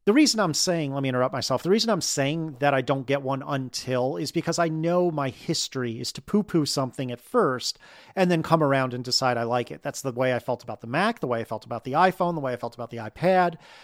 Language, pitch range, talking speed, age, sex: English, 125-175 Hz, 265 wpm, 40-59, male